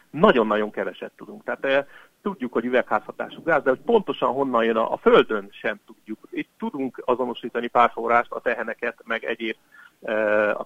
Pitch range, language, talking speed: 110-175 Hz, Hungarian, 170 wpm